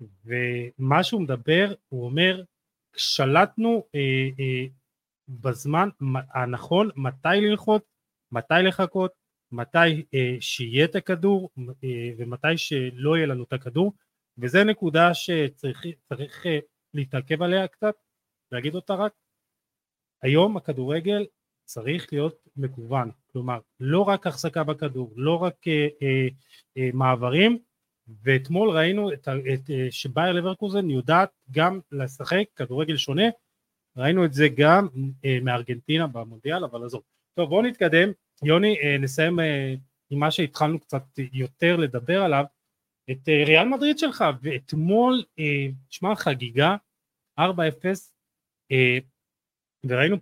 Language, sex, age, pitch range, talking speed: Hebrew, male, 30-49, 130-180 Hz, 115 wpm